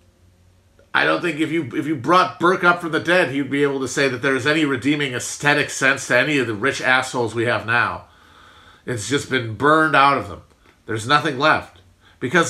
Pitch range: 115-155 Hz